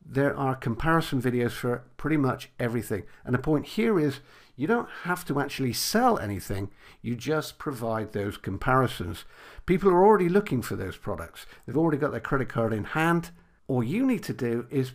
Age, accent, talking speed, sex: 50-69, British, 185 wpm, male